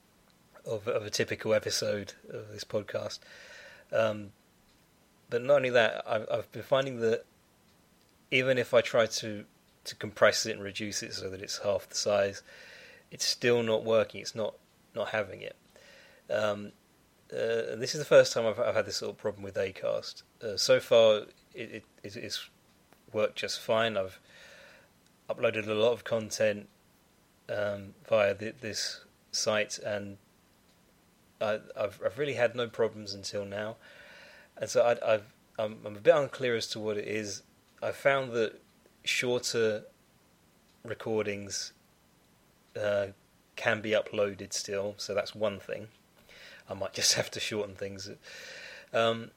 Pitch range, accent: 105-130 Hz, British